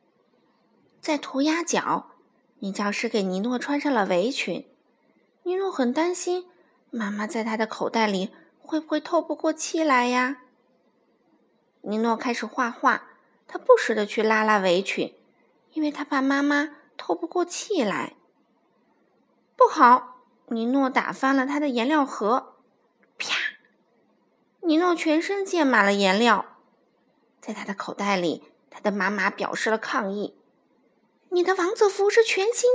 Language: Chinese